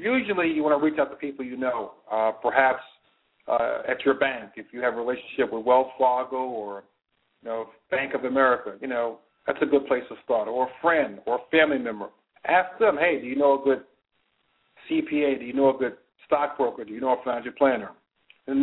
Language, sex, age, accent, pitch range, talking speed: English, male, 50-69, American, 130-155 Hz, 215 wpm